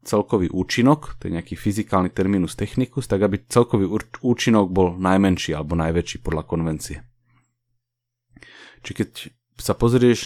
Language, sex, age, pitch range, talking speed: English, male, 30-49, 100-120 Hz, 130 wpm